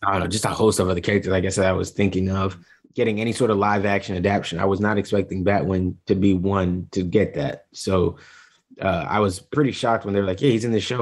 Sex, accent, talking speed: male, American, 270 wpm